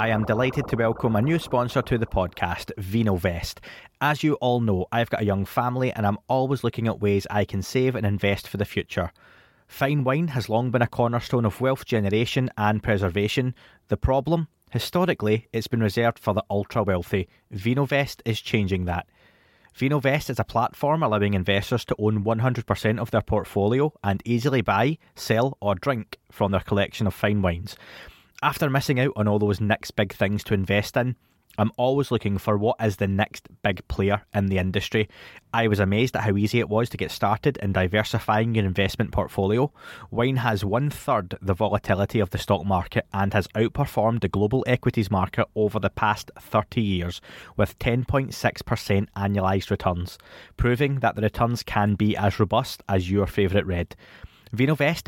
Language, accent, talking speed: English, British, 180 wpm